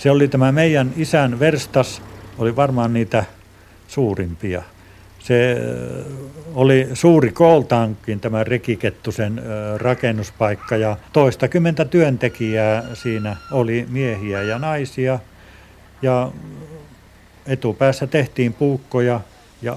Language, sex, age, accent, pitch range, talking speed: Finnish, male, 60-79, native, 115-145 Hz, 95 wpm